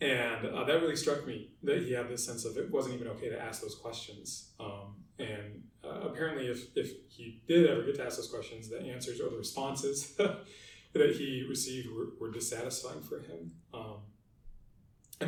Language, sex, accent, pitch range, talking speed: English, male, American, 115-150 Hz, 195 wpm